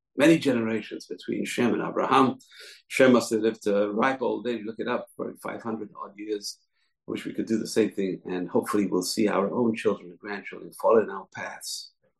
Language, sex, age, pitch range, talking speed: English, male, 50-69, 105-145 Hz, 195 wpm